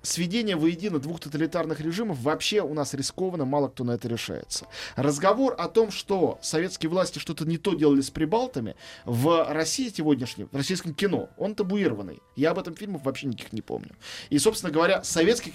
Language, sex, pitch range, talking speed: Russian, male, 130-185 Hz, 180 wpm